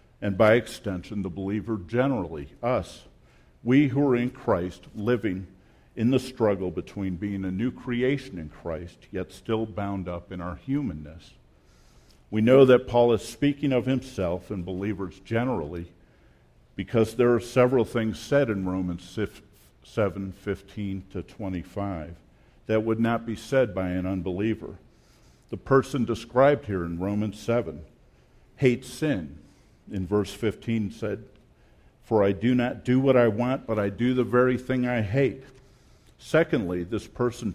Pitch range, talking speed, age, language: 90-120 Hz, 150 wpm, 50-69, English